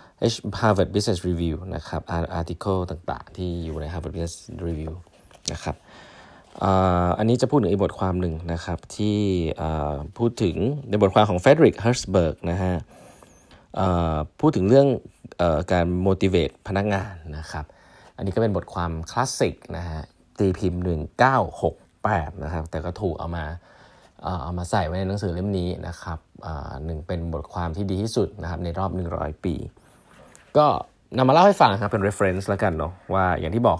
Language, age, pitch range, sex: Thai, 20-39, 85-100 Hz, male